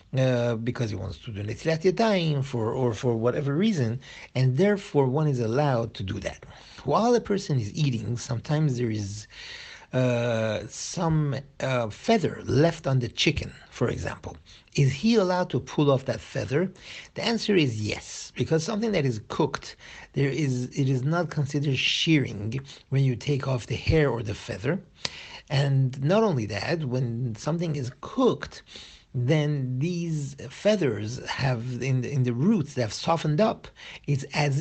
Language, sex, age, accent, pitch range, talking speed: English, male, 50-69, Italian, 120-155 Hz, 165 wpm